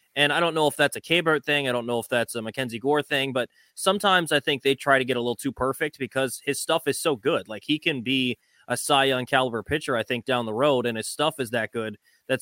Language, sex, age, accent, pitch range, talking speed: English, male, 20-39, American, 125-150 Hz, 275 wpm